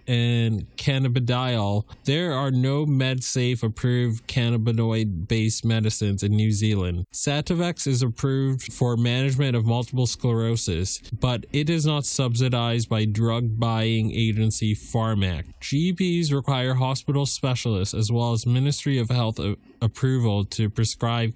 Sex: male